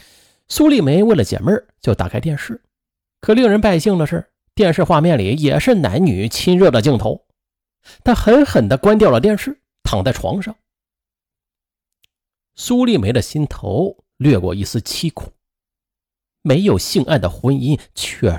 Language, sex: Chinese, male